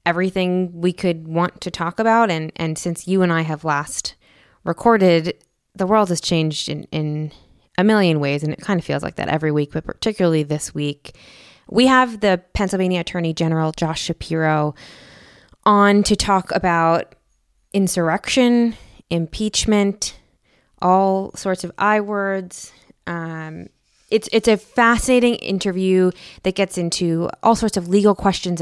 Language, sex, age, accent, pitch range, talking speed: English, female, 20-39, American, 160-195 Hz, 145 wpm